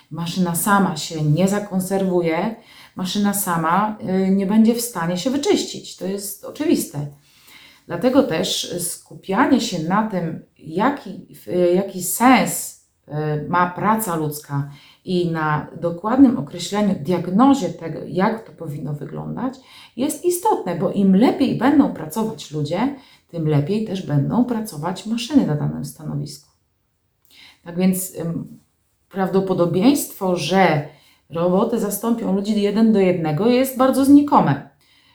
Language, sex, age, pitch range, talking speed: Polish, female, 30-49, 160-200 Hz, 115 wpm